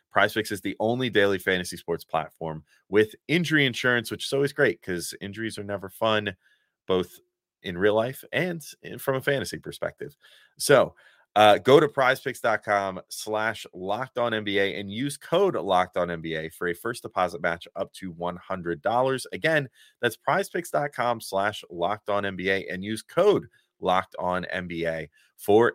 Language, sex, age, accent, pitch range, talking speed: English, male, 30-49, American, 95-130 Hz, 155 wpm